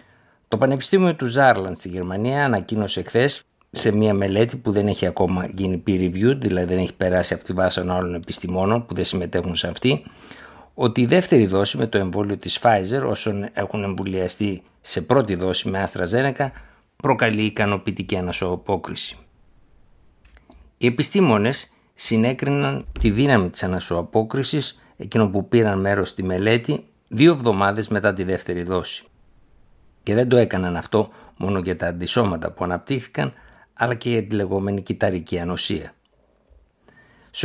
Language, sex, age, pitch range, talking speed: Greek, male, 60-79, 90-120 Hz, 145 wpm